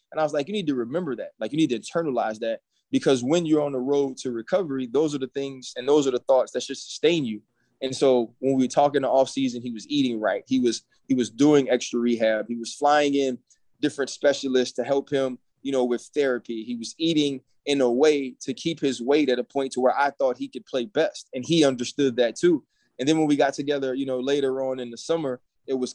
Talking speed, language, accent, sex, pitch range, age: 250 wpm, English, American, male, 125-145 Hz, 20-39